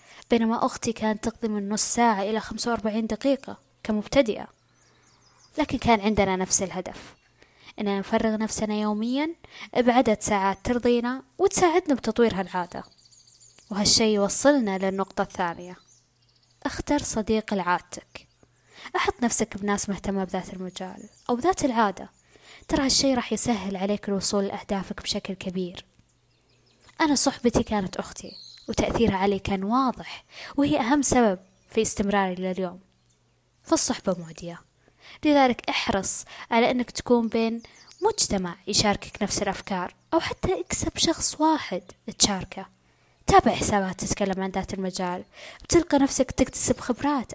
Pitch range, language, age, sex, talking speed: 195-250 Hz, Arabic, 20-39, female, 120 wpm